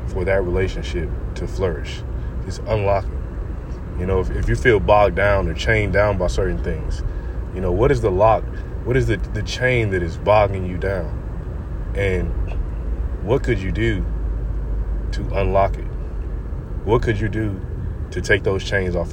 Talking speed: 170 wpm